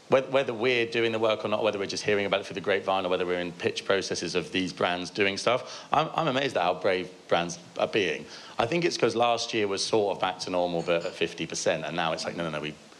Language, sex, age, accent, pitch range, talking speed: English, male, 30-49, British, 85-105 Hz, 270 wpm